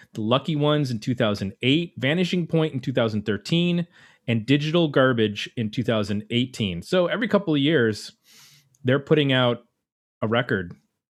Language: English